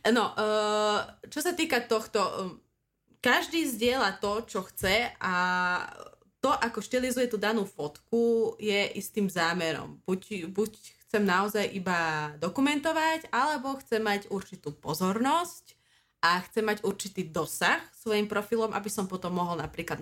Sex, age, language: female, 20-39, Slovak